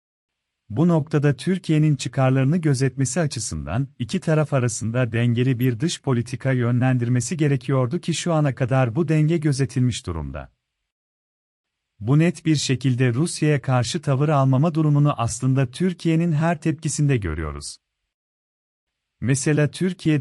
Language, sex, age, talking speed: Turkish, male, 40-59, 115 wpm